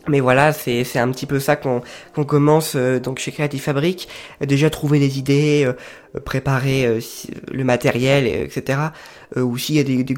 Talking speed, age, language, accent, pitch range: 200 wpm, 20-39, French, French, 130-155 Hz